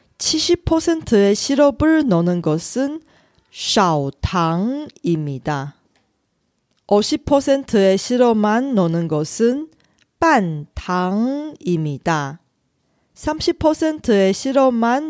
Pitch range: 165-260 Hz